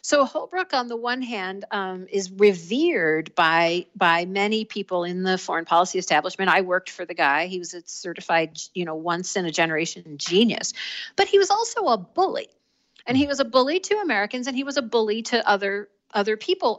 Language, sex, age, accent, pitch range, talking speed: English, female, 50-69, American, 190-250 Hz, 190 wpm